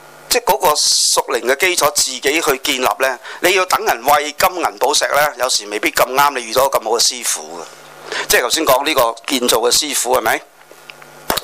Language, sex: Chinese, male